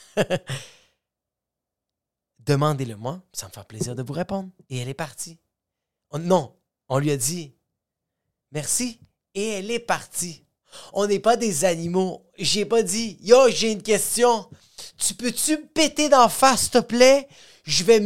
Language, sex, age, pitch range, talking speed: French, male, 30-49, 175-235 Hz, 155 wpm